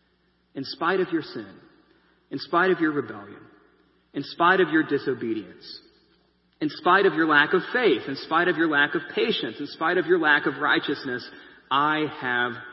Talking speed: 180 wpm